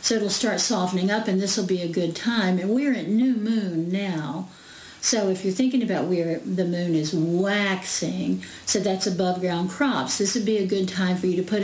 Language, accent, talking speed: English, American, 215 wpm